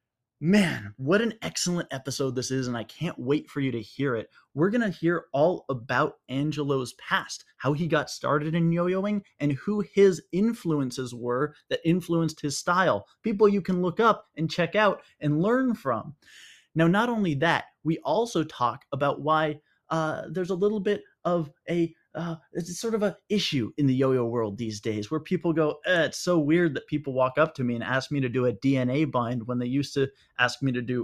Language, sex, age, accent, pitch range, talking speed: English, male, 20-39, American, 135-175 Hz, 205 wpm